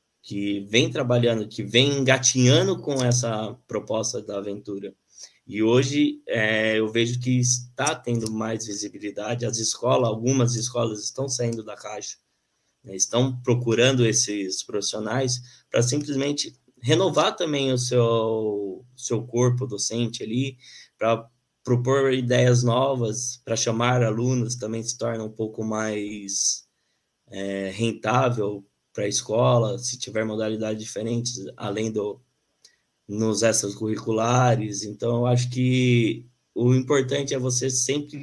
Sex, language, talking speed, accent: male, Portuguese, 120 wpm, Brazilian